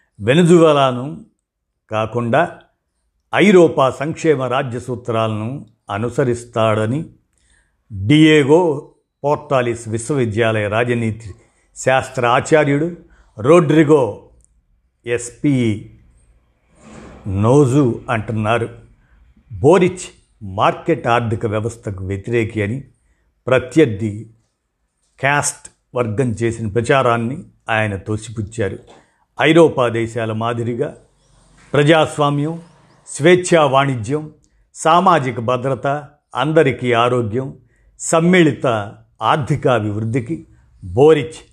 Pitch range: 110-150 Hz